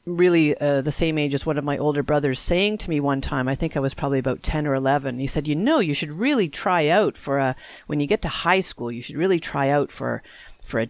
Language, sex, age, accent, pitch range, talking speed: English, female, 40-59, American, 135-160 Hz, 275 wpm